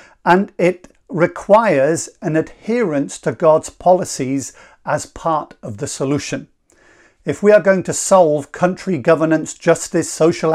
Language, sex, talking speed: English, male, 130 wpm